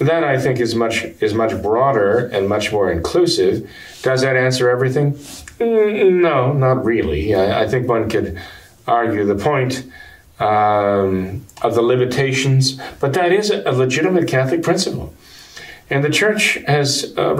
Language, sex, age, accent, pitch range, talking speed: English, male, 50-69, American, 110-140 Hz, 145 wpm